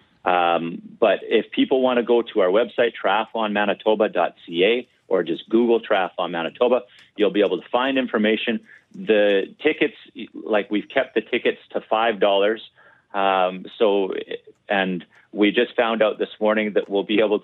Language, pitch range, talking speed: English, 100-120 Hz, 155 wpm